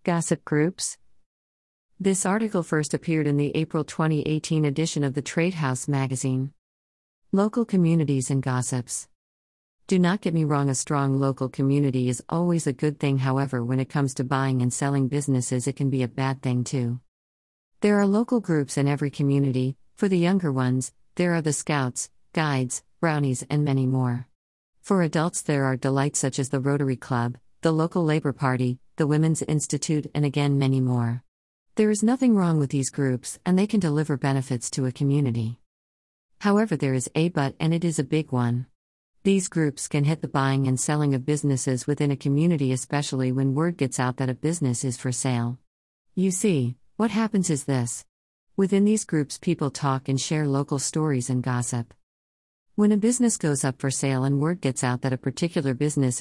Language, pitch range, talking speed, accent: English, 130-155 Hz, 185 wpm, American